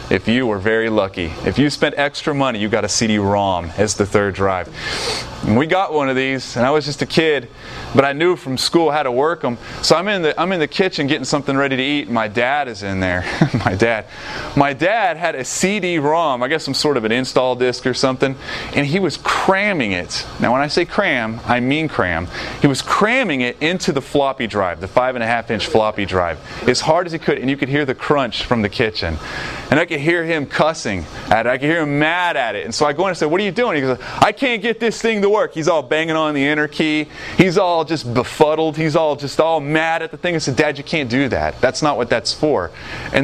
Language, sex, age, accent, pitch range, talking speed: English, male, 30-49, American, 120-160 Hz, 255 wpm